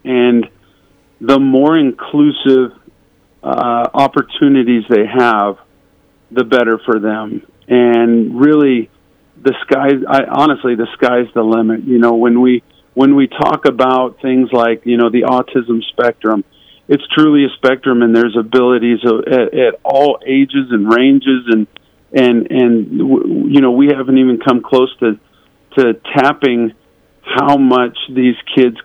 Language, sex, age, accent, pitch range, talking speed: English, male, 50-69, American, 115-130 Hz, 140 wpm